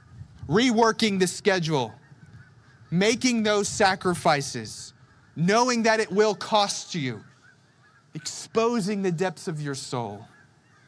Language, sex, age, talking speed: English, male, 20-39, 100 wpm